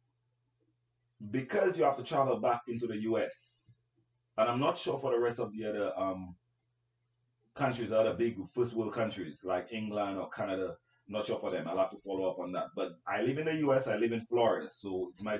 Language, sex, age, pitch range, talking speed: English, male, 30-49, 110-125 Hz, 215 wpm